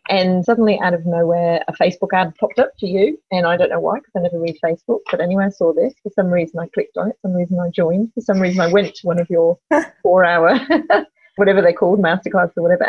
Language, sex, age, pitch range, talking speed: English, female, 30-49, 170-230 Hz, 255 wpm